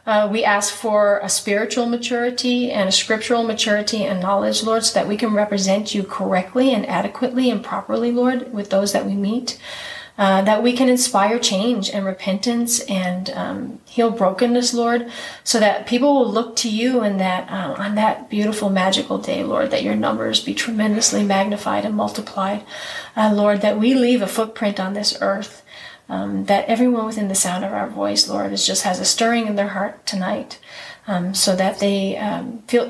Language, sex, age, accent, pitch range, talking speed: English, female, 30-49, American, 200-235 Hz, 190 wpm